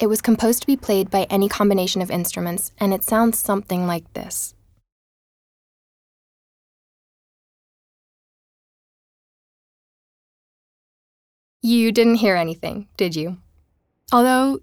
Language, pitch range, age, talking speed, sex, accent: English, 180-220 Hz, 10-29, 100 wpm, female, American